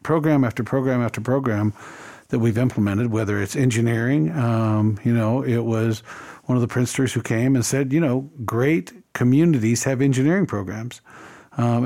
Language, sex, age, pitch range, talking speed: English, male, 50-69, 115-150 Hz, 160 wpm